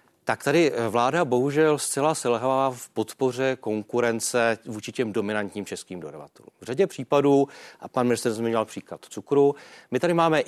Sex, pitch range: male, 120-150 Hz